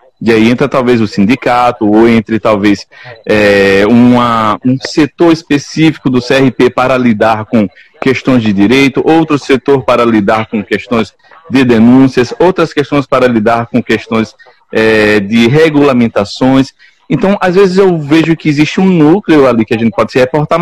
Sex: male